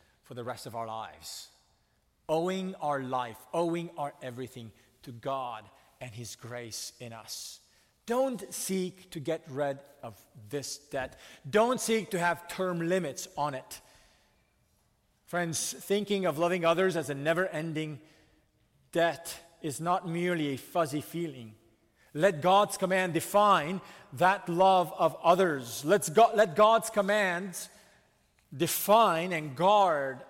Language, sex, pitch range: English, male, 135-180 Hz